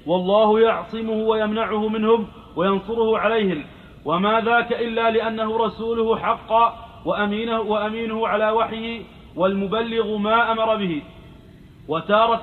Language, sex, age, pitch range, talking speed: Arabic, male, 40-59, 200-225 Hz, 100 wpm